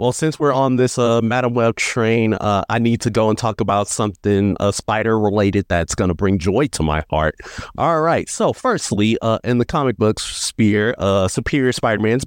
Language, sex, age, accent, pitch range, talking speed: English, male, 30-49, American, 100-130 Hz, 195 wpm